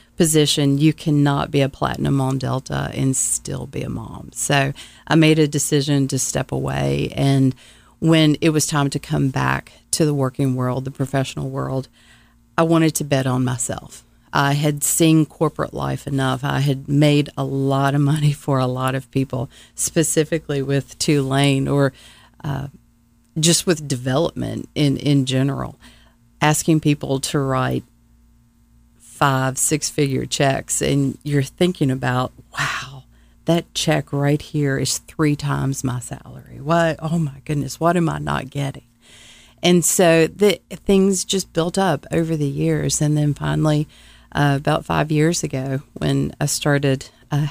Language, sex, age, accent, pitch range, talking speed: English, female, 40-59, American, 130-155 Hz, 155 wpm